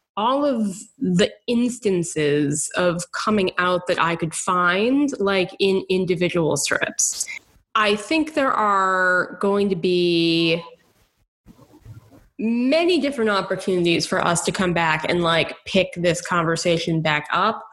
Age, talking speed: 20-39, 125 wpm